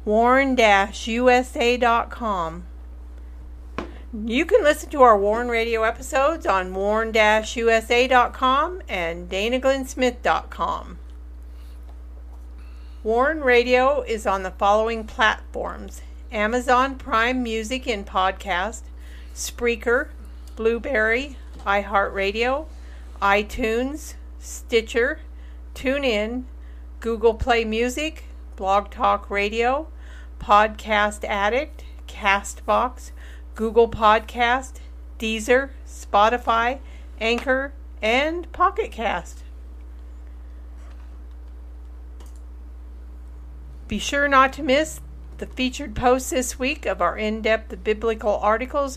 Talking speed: 75 wpm